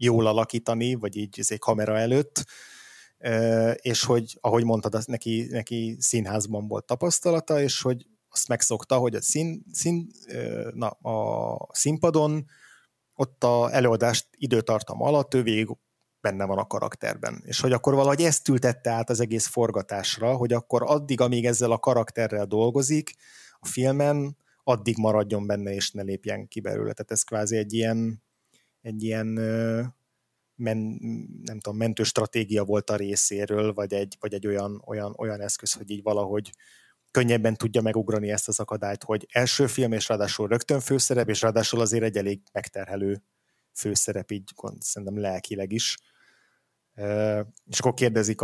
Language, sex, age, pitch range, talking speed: Hungarian, male, 30-49, 105-120 Hz, 150 wpm